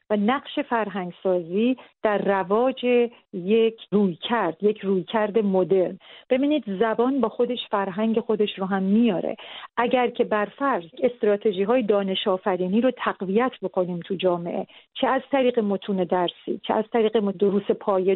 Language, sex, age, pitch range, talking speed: Persian, female, 40-59, 195-245 Hz, 150 wpm